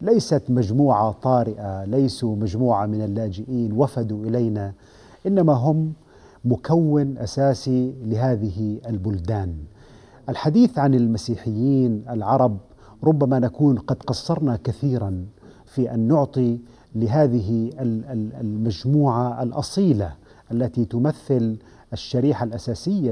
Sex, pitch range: male, 110-135 Hz